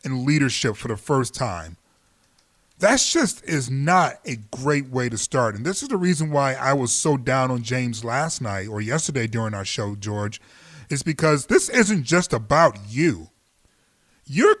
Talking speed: 175 wpm